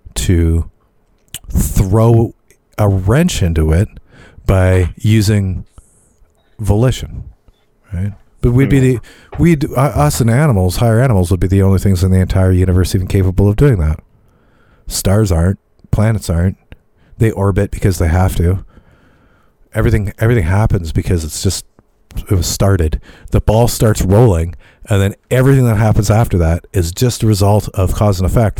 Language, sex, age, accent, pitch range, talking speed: English, male, 40-59, American, 90-110 Hz, 150 wpm